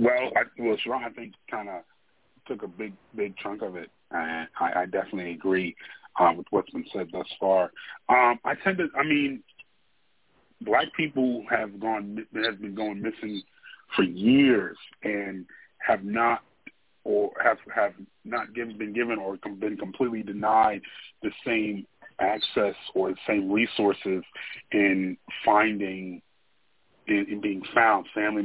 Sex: male